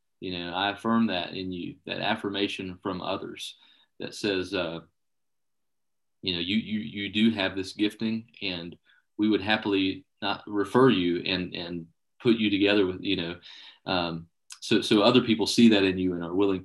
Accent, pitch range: American, 90-110 Hz